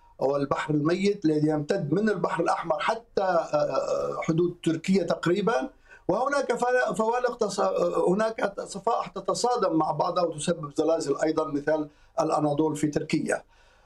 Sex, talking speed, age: male, 115 wpm, 50-69